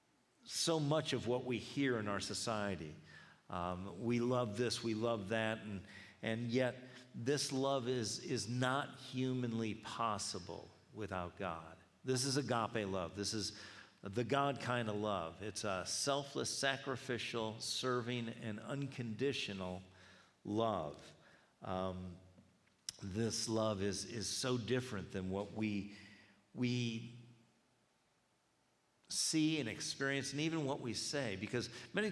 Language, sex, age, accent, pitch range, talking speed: English, male, 50-69, American, 100-125 Hz, 125 wpm